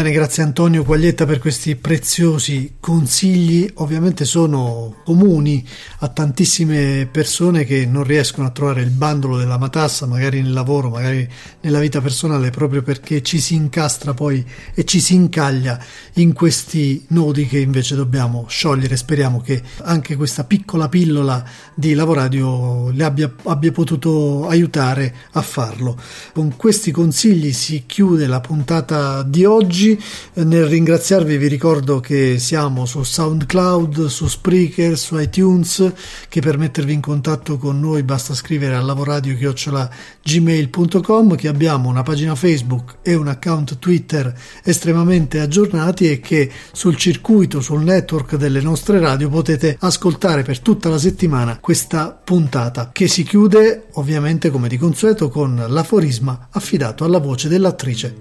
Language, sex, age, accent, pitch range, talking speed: Italian, male, 40-59, native, 135-170 Hz, 140 wpm